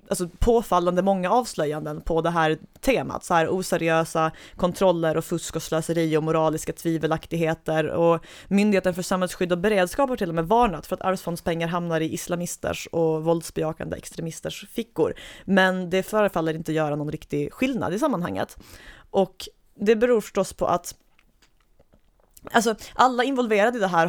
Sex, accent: female, native